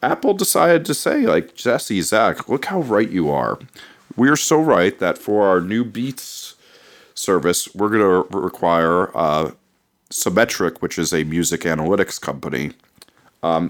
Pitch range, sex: 80-100 Hz, male